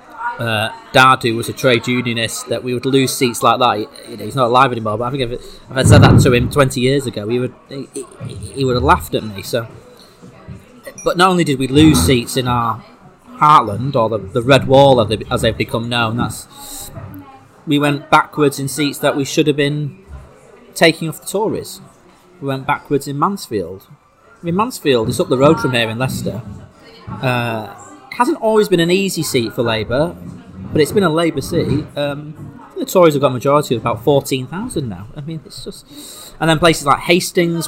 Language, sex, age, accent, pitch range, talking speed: English, male, 30-49, British, 120-155 Hz, 210 wpm